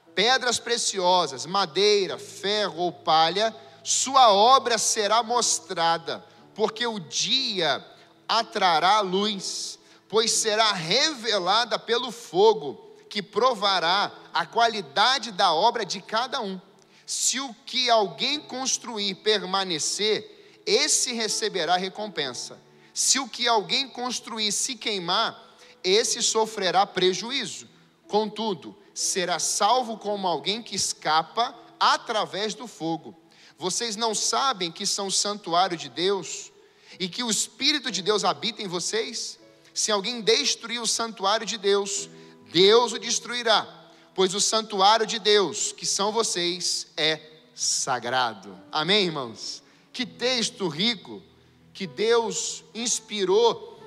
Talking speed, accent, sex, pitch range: 115 wpm, Brazilian, male, 185-240 Hz